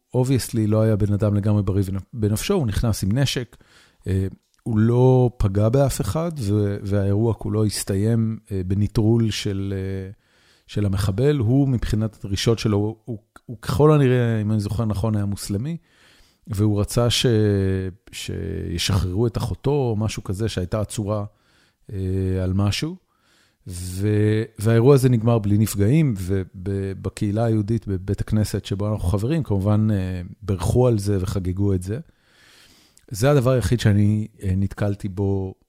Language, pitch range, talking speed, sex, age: Hebrew, 100-115 Hz, 130 wpm, male, 40-59